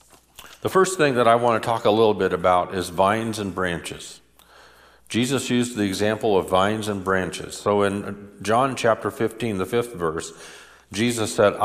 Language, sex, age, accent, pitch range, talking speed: English, male, 50-69, American, 95-120 Hz, 170 wpm